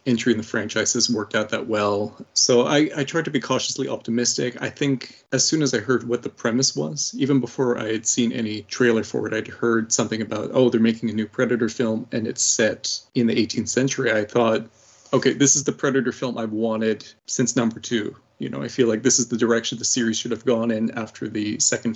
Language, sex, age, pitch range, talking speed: English, male, 30-49, 115-130 Hz, 235 wpm